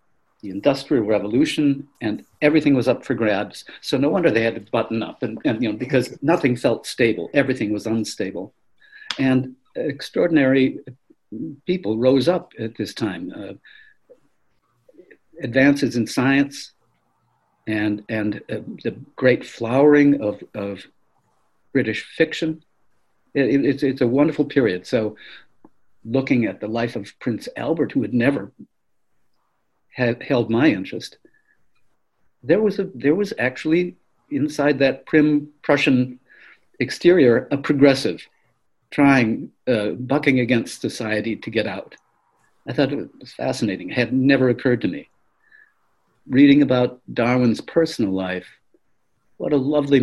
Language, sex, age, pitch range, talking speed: English, male, 60-79, 115-145 Hz, 130 wpm